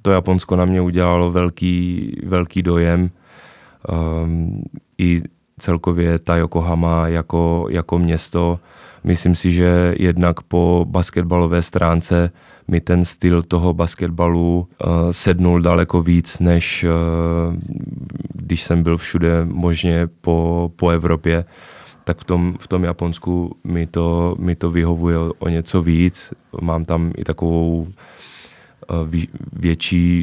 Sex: male